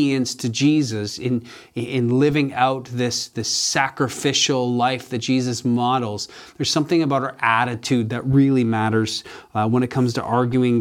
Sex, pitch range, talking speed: male, 115-135 Hz, 150 wpm